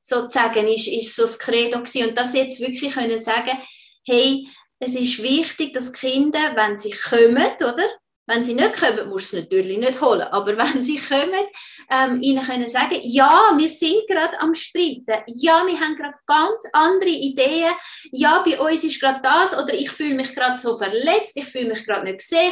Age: 20-39